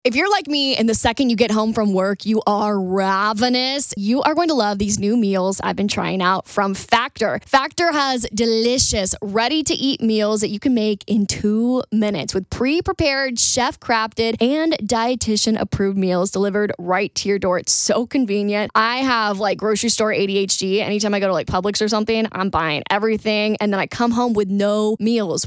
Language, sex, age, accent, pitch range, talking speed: English, female, 10-29, American, 205-255 Hz, 200 wpm